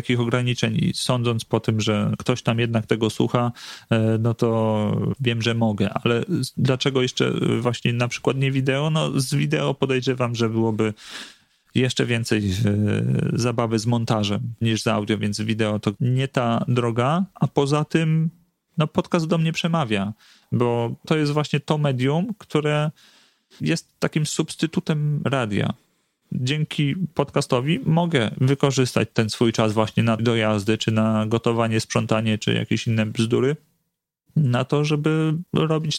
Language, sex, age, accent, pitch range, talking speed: Polish, male, 40-59, native, 115-150 Hz, 145 wpm